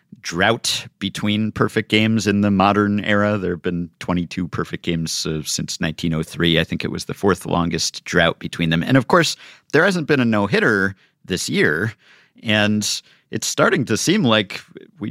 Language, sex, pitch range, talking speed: English, male, 90-120 Hz, 175 wpm